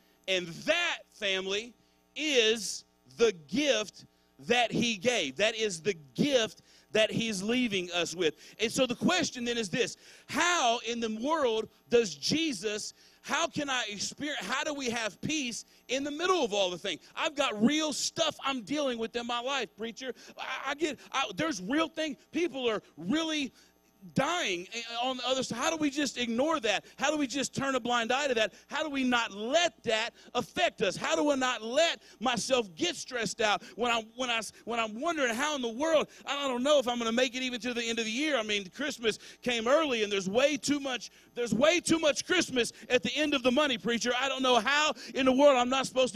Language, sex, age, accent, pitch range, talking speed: English, male, 40-59, American, 220-285 Hz, 220 wpm